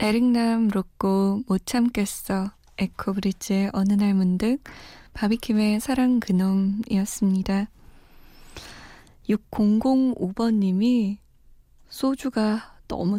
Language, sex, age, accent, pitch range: Korean, female, 20-39, native, 195-235 Hz